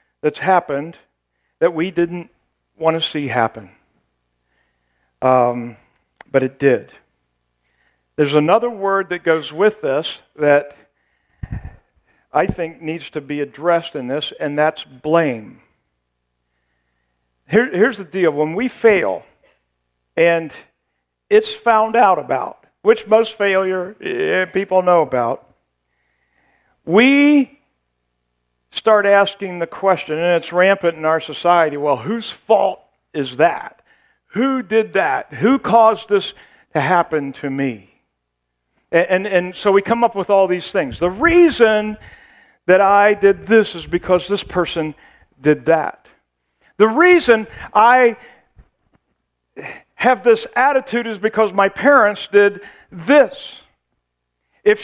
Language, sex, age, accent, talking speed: English, male, 50-69, American, 120 wpm